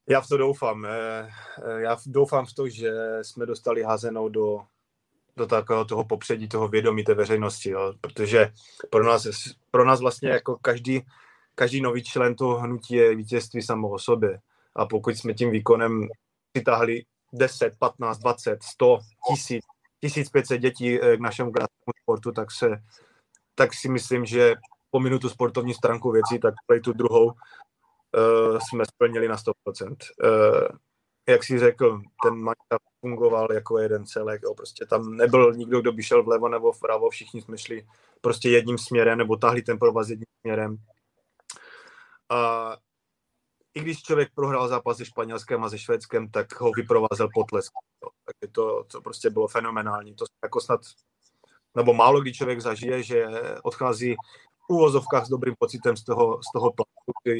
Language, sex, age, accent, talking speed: Czech, male, 20-39, native, 155 wpm